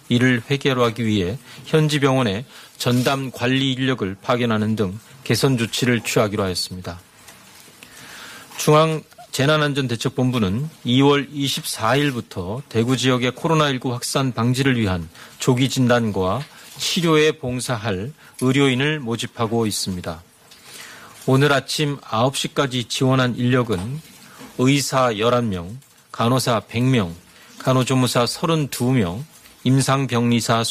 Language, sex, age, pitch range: Korean, male, 40-59, 115-140 Hz